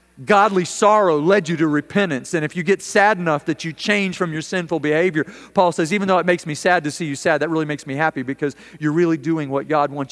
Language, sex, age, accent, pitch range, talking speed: English, male, 40-59, American, 150-185 Hz, 255 wpm